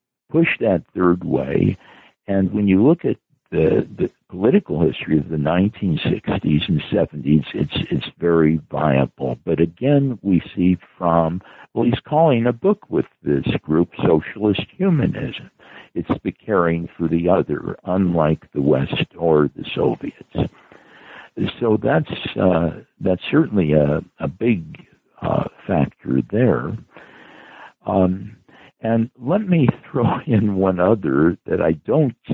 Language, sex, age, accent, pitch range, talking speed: English, male, 60-79, American, 80-115 Hz, 130 wpm